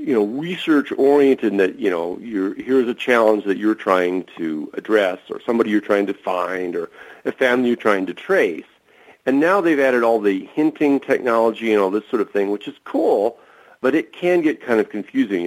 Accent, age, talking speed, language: American, 50-69, 200 wpm, English